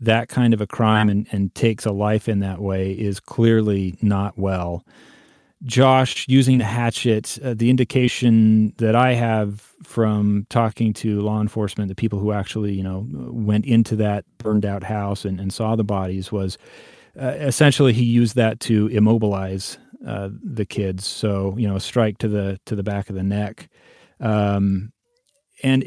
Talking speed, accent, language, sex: 175 wpm, American, English, male